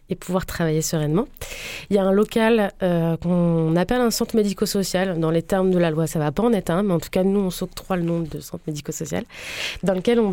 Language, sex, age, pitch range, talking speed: French, female, 20-39, 165-195 Hz, 255 wpm